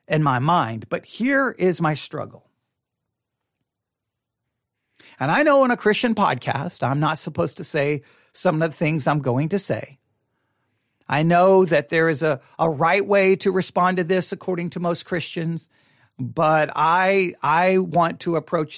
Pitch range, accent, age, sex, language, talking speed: 125-170 Hz, American, 50-69, male, English, 165 wpm